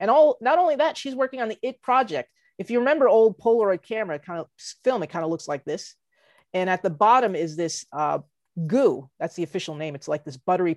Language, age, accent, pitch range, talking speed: English, 30-49, American, 165-220 Hz, 235 wpm